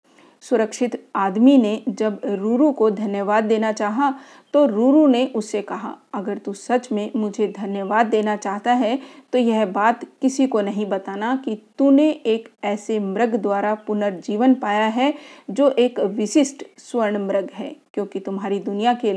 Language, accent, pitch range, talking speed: Hindi, native, 205-265 Hz, 155 wpm